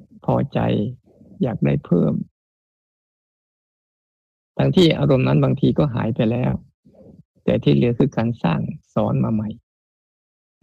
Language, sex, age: Thai, male, 20-39